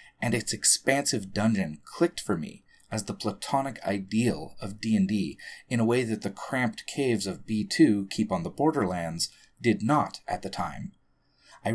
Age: 30-49